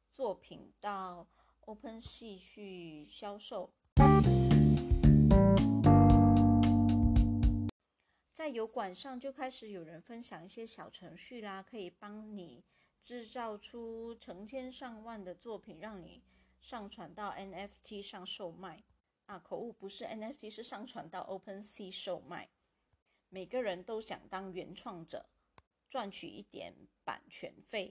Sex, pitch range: female, 175-230 Hz